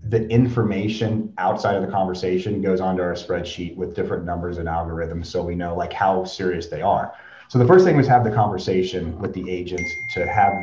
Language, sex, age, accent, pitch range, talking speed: English, male, 30-49, American, 90-120 Hz, 205 wpm